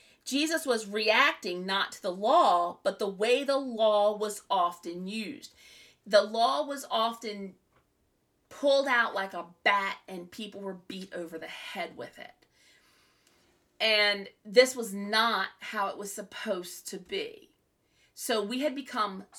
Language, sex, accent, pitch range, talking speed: English, female, American, 210-280 Hz, 145 wpm